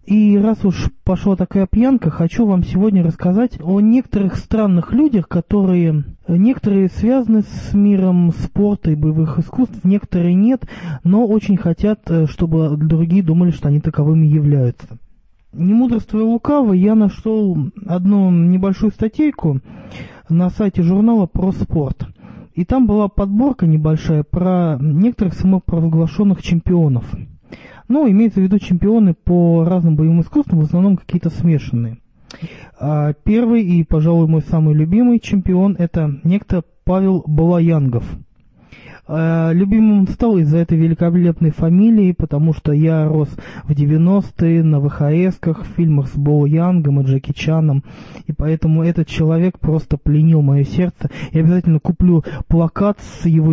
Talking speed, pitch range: 130 wpm, 155-195 Hz